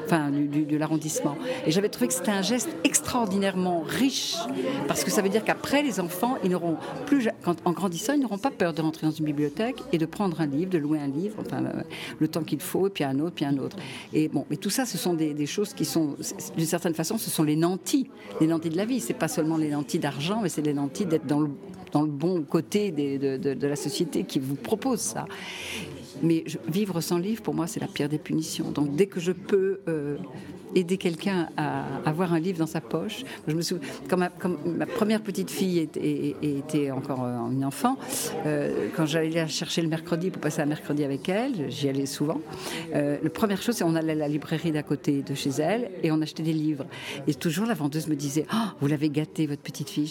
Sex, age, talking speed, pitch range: female, 50-69, 240 wpm, 150-195 Hz